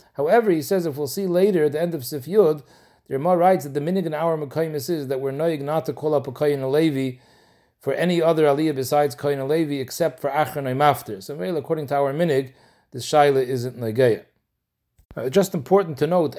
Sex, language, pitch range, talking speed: male, English, 130-165 Hz, 210 wpm